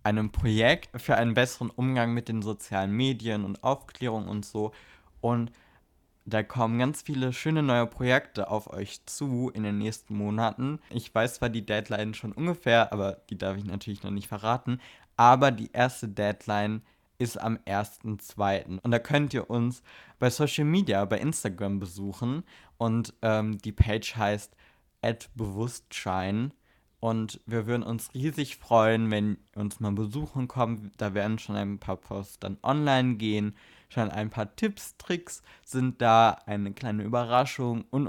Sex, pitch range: male, 105-125 Hz